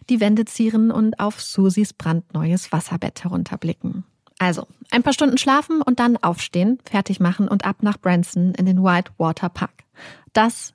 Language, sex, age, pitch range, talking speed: German, female, 30-49, 190-235 Hz, 155 wpm